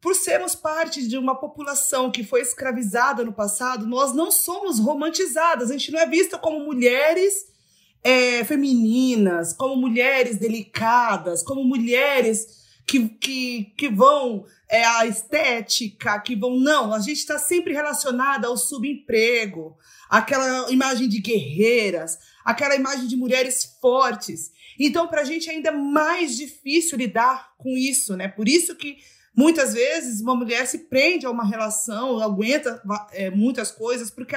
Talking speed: 145 wpm